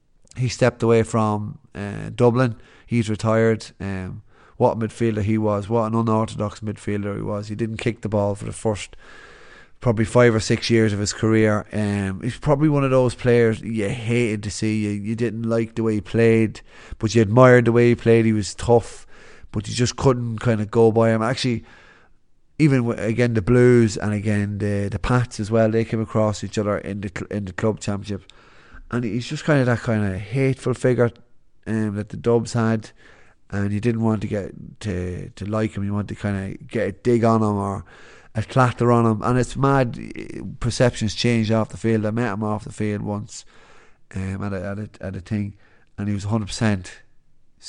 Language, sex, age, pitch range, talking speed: English, male, 30-49, 105-120 Hz, 210 wpm